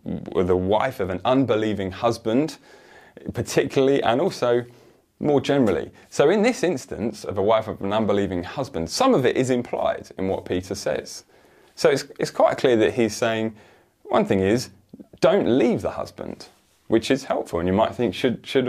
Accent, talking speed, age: British, 175 wpm, 20-39